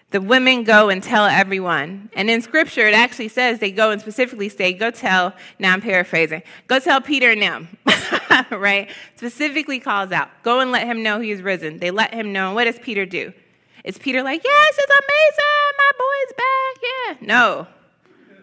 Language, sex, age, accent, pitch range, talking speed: English, female, 20-39, American, 185-240 Hz, 185 wpm